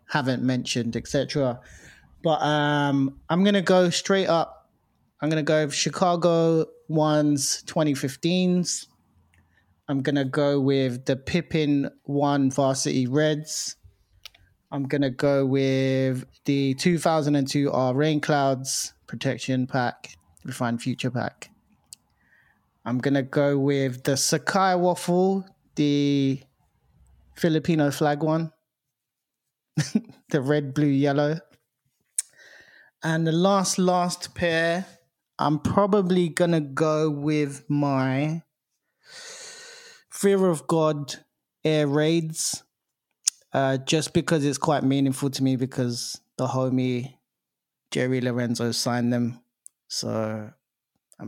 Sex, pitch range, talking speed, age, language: male, 130-160 Hz, 110 wpm, 20-39, English